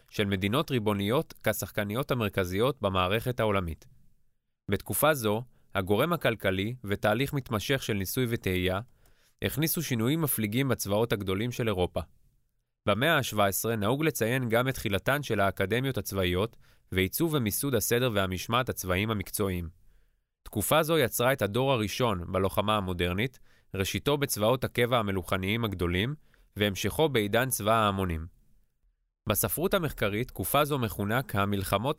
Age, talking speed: 20-39, 115 wpm